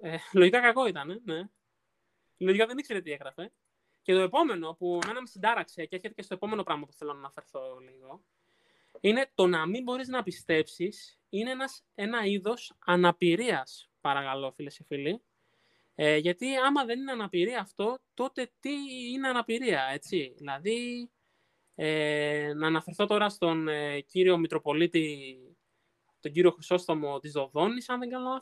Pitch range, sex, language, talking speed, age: 145-215 Hz, male, Greek, 160 wpm, 20-39